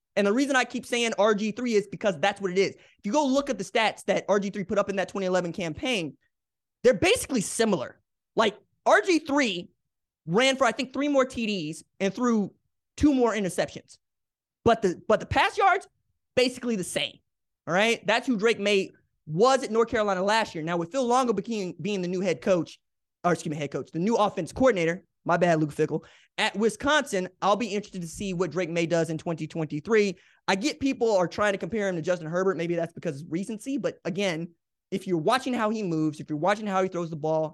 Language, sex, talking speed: English, male, 215 wpm